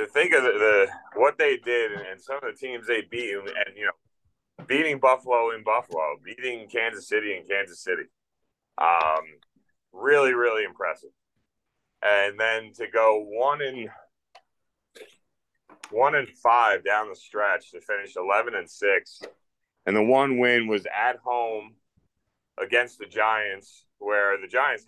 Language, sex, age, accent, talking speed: English, male, 30-49, American, 150 wpm